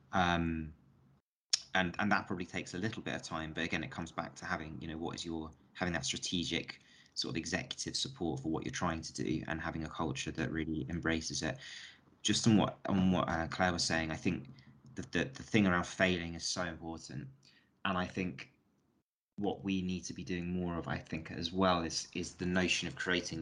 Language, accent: English, British